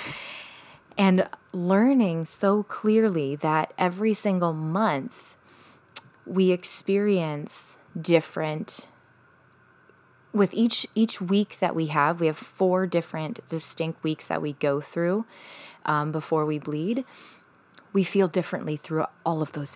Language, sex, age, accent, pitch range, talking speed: English, female, 20-39, American, 150-195 Hz, 120 wpm